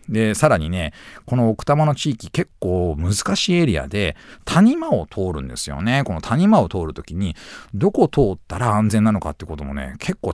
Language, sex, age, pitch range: Japanese, male, 40-59, 90-145 Hz